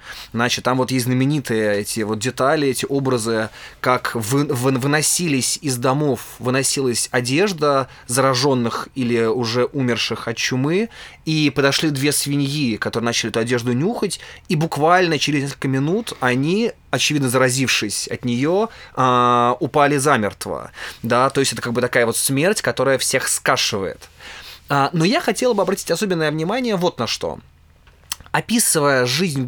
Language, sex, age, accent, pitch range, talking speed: Russian, male, 20-39, native, 125-165 Hz, 135 wpm